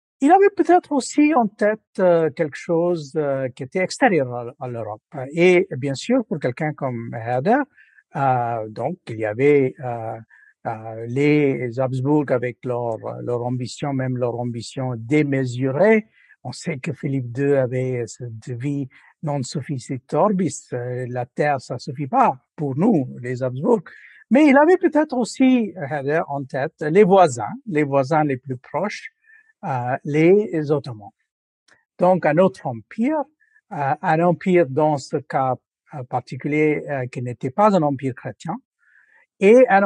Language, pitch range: French, 130-185 Hz